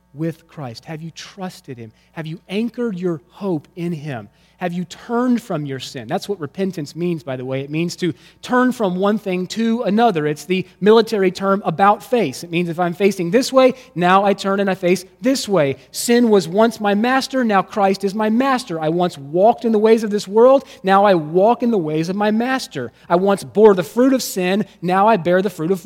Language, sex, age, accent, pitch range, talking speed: English, male, 30-49, American, 130-205 Hz, 225 wpm